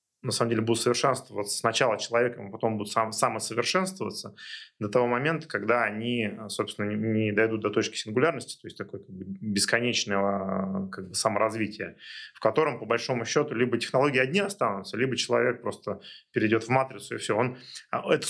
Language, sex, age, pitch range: Russian, male, 20-39, 105-130 Hz